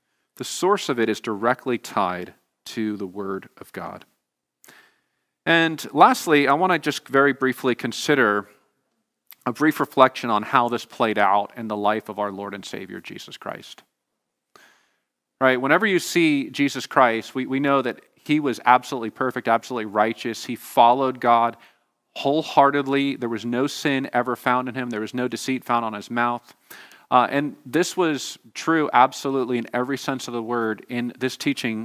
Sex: male